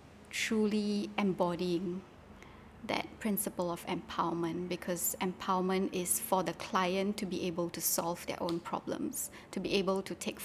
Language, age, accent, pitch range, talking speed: English, 20-39, Malaysian, 175-200 Hz, 145 wpm